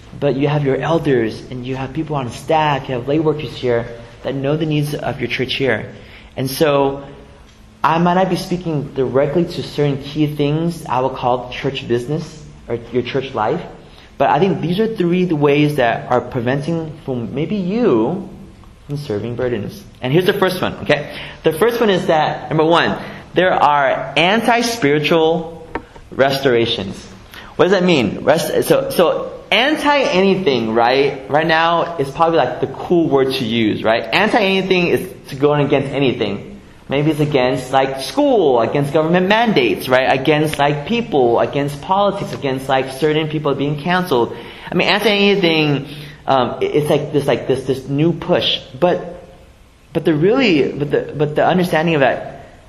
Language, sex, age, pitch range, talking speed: English, male, 30-49, 125-165 Hz, 165 wpm